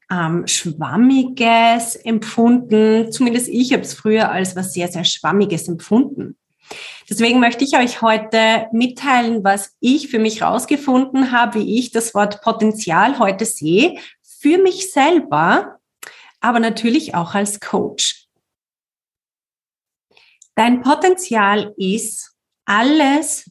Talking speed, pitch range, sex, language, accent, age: 115 wpm, 205-270 Hz, female, German, German, 30-49